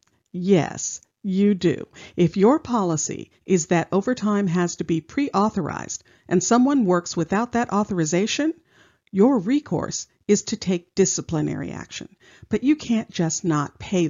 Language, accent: English, American